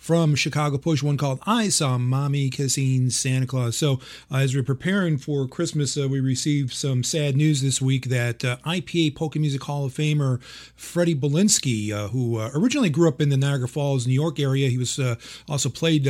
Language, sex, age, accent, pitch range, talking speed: English, male, 40-59, American, 120-140 Hz, 200 wpm